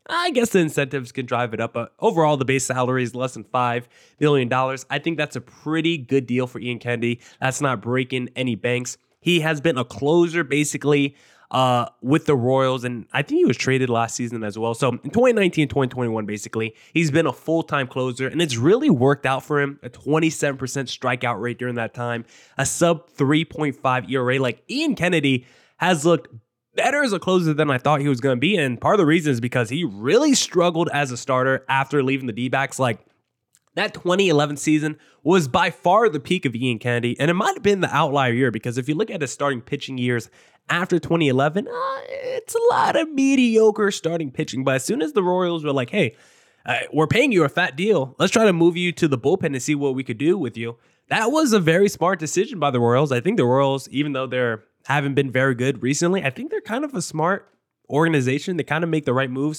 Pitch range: 130-170 Hz